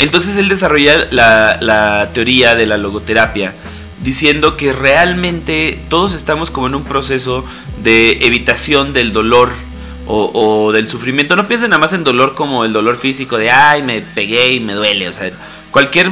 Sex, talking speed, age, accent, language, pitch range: male, 170 wpm, 30-49, Mexican, Spanish, 110-140 Hz